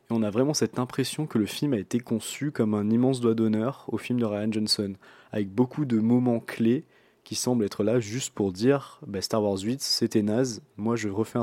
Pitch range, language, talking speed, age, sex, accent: 105-125 Hz, French, 220 wpm, 20-39, male, French